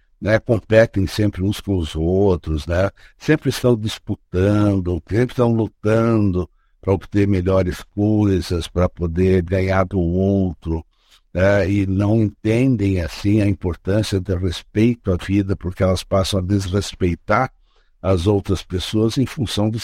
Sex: male